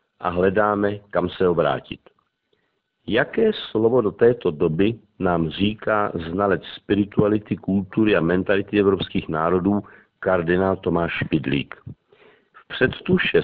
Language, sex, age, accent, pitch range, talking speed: Czech, male, 50-69, native, 95-115 Hz, 105 wpm